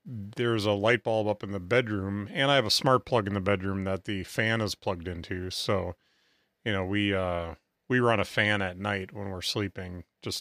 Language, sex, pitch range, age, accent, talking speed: English, male, 95-115 Hz, 30-49, American, 220 wpm